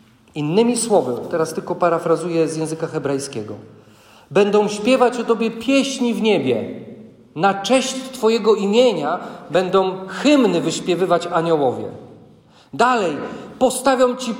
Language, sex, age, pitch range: Polish, male, 40-59, 115-190 Hz